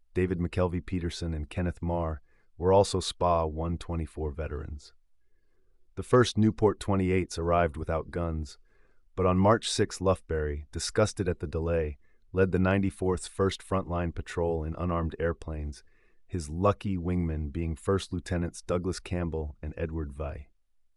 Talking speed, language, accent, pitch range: 130 wpm, English, American, 80-95 Hz